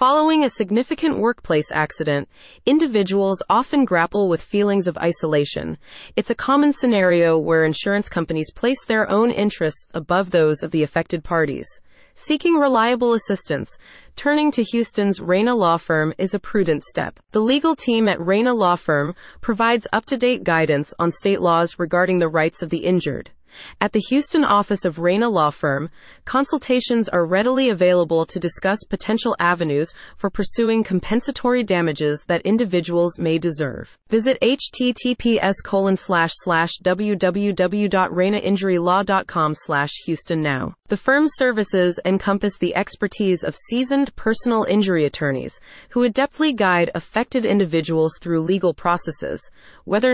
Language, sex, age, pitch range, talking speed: English, female, 30-49, 165-230 Hz, 135 wpm